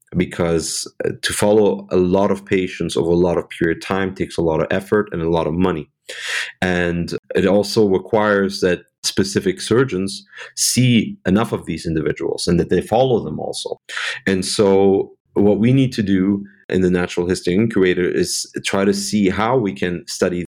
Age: 30-49